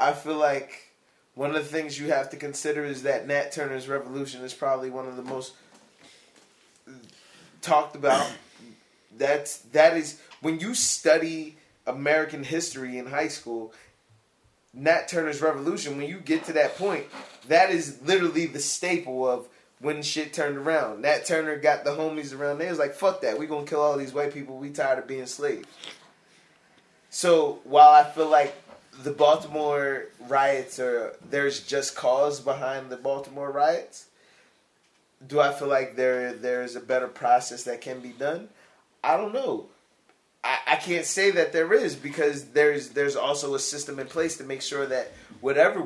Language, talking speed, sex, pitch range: English, 170 wpm, male, 130-155 Hz